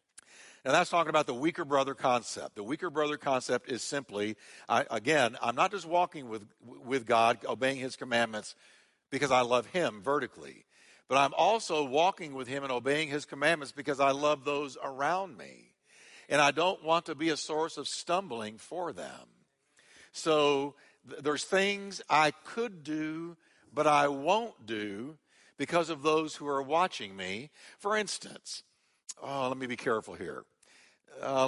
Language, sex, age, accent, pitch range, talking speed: English, male, 60-79, American, 130-170 Hz, 160 wpm